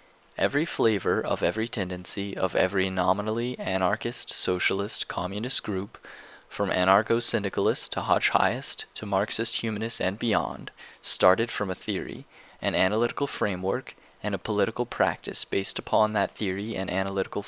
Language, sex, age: English, male, 20-39